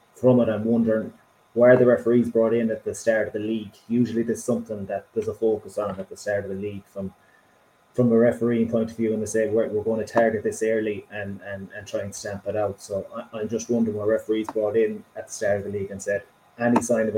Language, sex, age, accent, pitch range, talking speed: English, male, 20-39, Irish, 105-115 Hz, 260 wpm